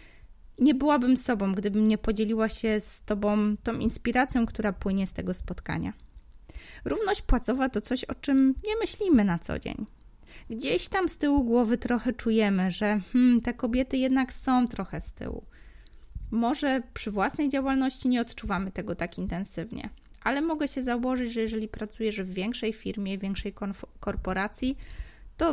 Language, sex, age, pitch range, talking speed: Polish, female, 20-39, 195-250 Hz, 150 wpm